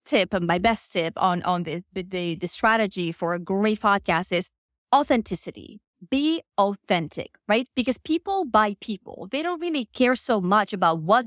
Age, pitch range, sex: 20-39, 190-255 Hz, female